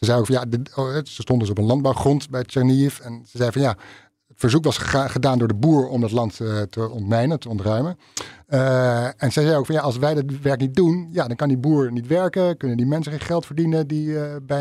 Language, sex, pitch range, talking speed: Dutch, male, 120-140 Hz, 260 wpm